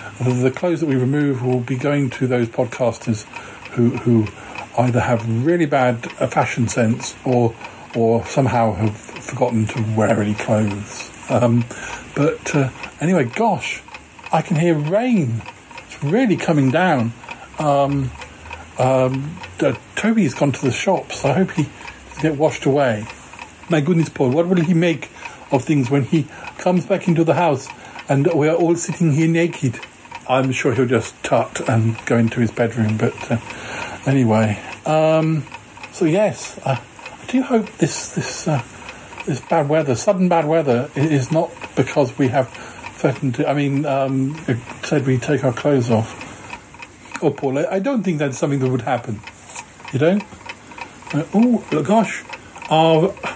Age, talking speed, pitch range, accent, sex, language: 50-69, 160 wpm, 120-165 Hz, British, male, English